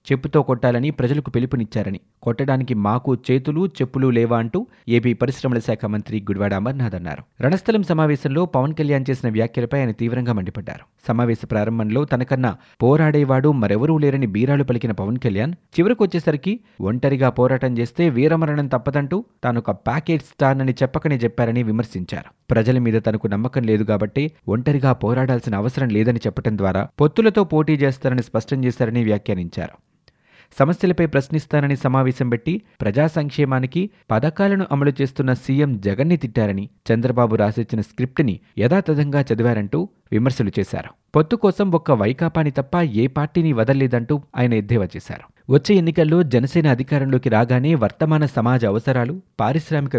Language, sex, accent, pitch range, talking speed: Telugu, male, native, 115-150 Hz, 125 wpm